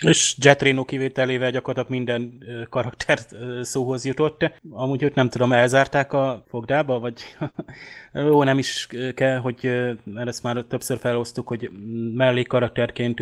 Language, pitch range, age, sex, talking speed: Hungarian, 120-130 Hz, 20-39, male, 130 wpm